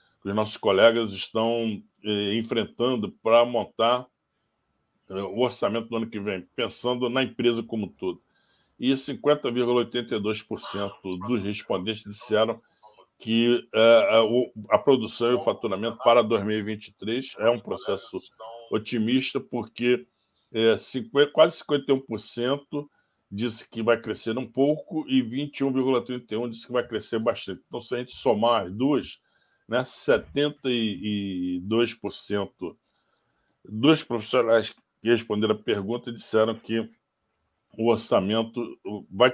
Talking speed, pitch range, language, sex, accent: 115 wpm, 110-130 Hz, Portuguese, male, Brazilian